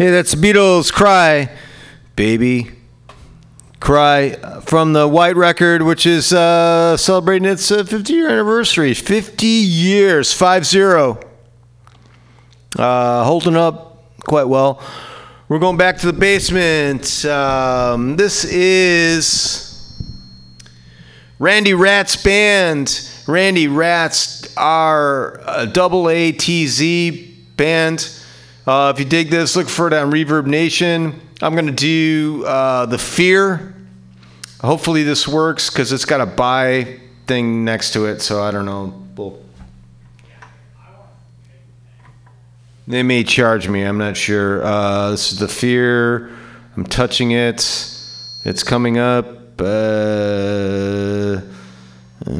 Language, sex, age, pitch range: English, male, 30-49, 115-165 Hz